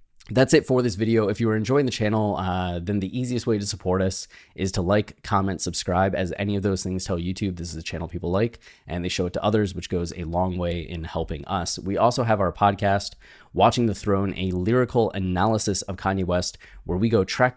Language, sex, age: English, male, 20-39